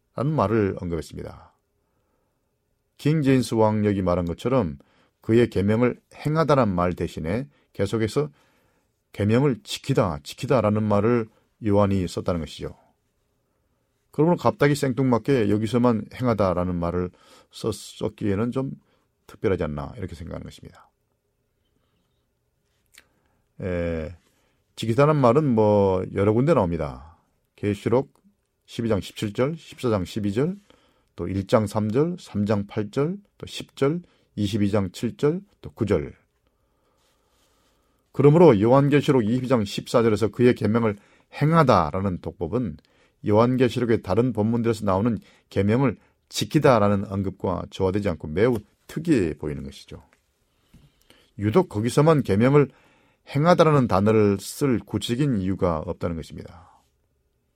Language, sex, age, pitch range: Korean, male, 40-59, 95-130 Hz